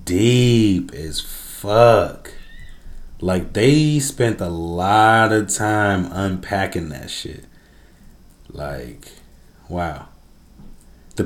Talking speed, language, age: 85 wpm, English, 30-49